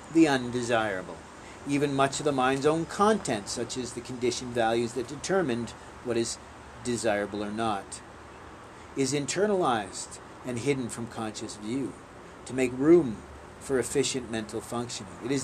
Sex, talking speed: male, 145 wpm